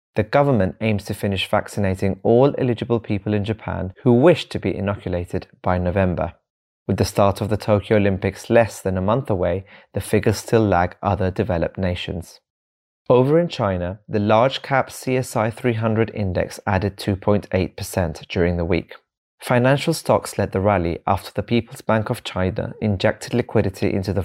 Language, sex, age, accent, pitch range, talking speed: English, male, 30-49, British, 95-115 Hz, 160 wpm